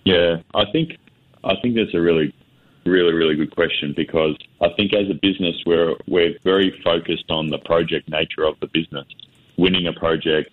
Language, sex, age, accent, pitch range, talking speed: English, male, 30-49, Australian, 80-95 Hz, 180 wpm